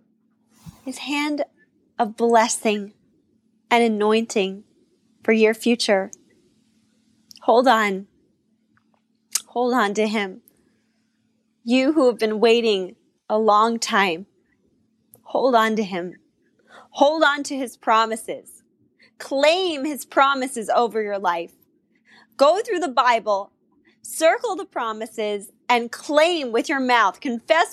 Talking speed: 110 wpm